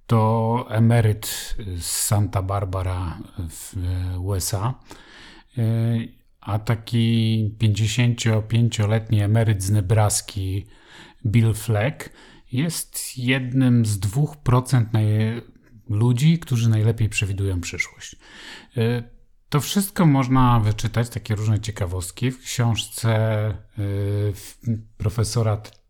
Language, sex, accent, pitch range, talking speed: Polish, male, native, 105-120 Hz, 80 wpm